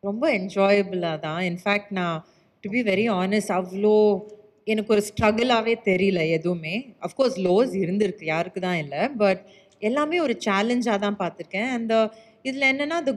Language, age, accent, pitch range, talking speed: Tamil, 30-49, native, 195-255 Hz, 135 wpm